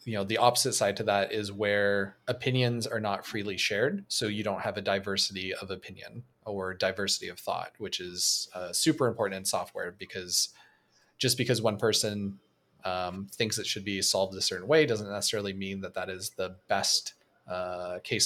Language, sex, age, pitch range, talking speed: English, male, 20-39, 100-120 Hz, 185 wpm